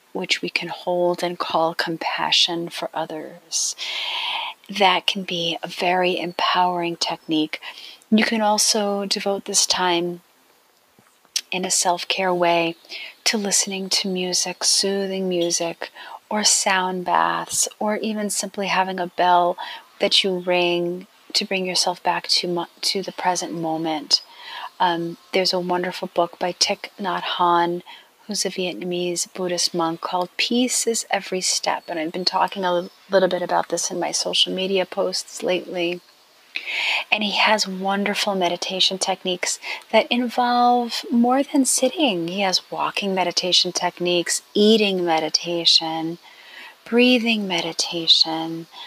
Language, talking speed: English, 130 wpm